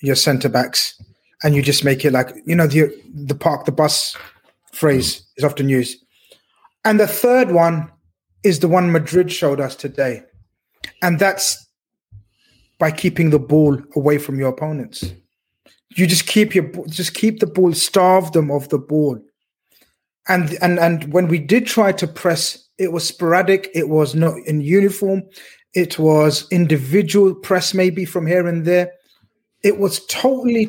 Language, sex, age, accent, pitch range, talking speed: English, male, 30-49, British, 145-185 Hz, 160 wpm